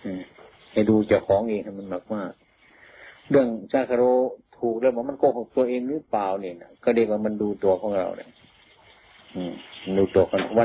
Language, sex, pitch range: Thai, male, 100-120 Hz